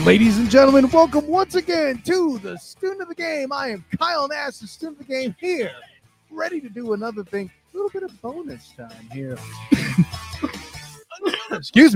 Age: 30-49